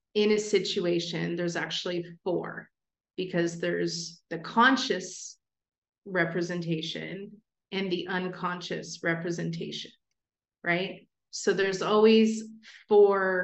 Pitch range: 170-200 Hz